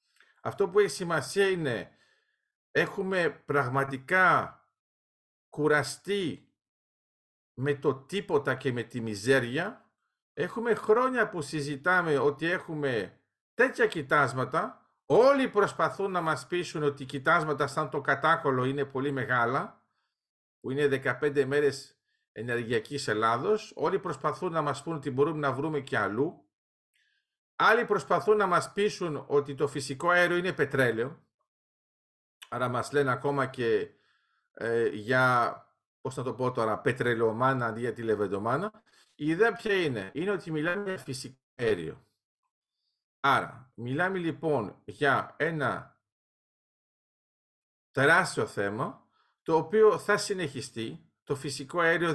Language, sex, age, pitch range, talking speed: Greek, male, 50-69, 135-195 Hz, 120 wpm